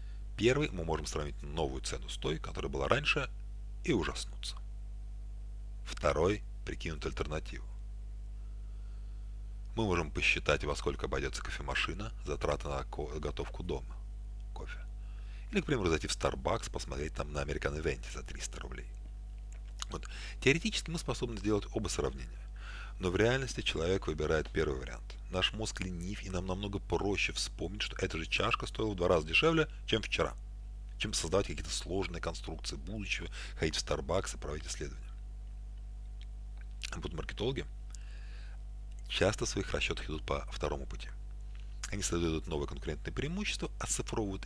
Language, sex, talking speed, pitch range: Russian, male, 140 wpm, 90-105 Hz